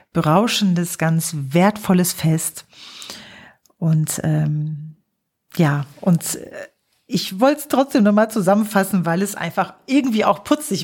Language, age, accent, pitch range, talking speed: German, 40-59, German, 160-205 Hz, 115 wpm